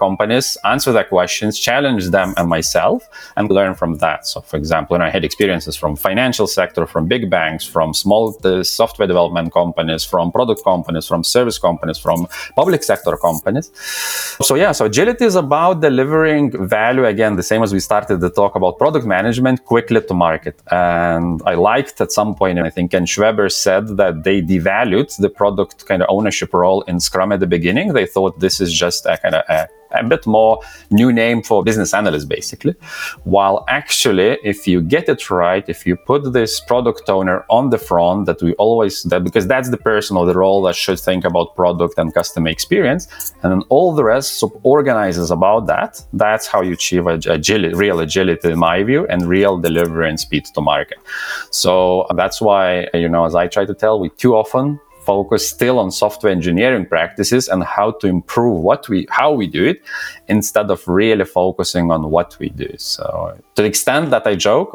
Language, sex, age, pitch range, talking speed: English, male, 30-49, 85-105 Hz, 195 wpm